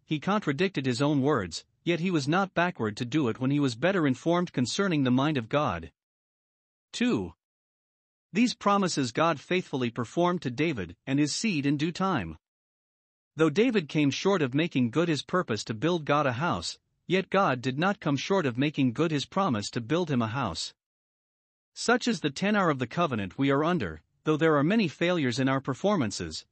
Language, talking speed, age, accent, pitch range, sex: English, 190 wpm, 50-69, American, 130-185 Hz, male